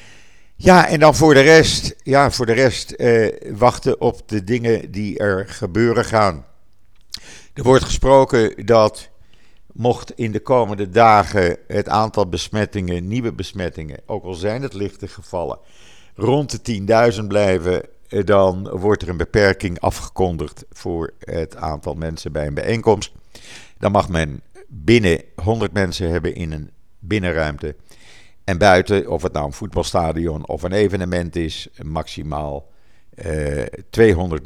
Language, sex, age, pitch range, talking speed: Dutch, male, 50-69, 90-110 Hz, 135 wpm